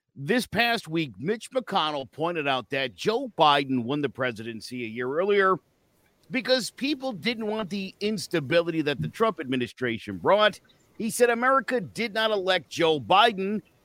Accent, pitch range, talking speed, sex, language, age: American, 130-220 Hz, 150 wpm, male, English, 50-69